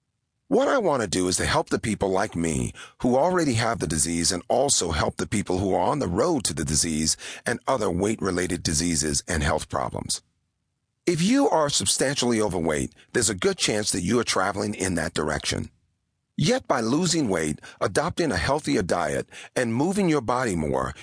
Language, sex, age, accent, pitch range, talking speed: English, male, 40-59, American, 85-135 Hz, 190 wpm